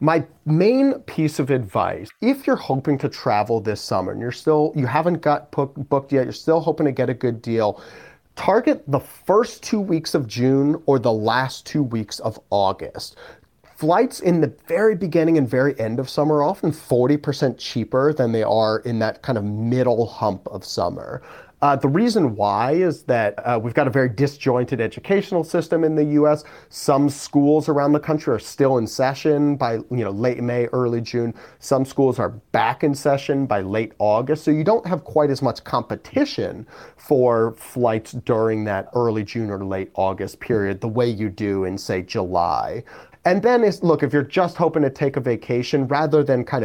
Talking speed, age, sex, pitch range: 195 wpm, 30-49, male, 115-150 Hz